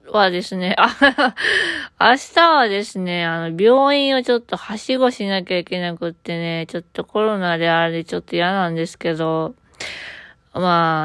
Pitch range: 165-200 Hz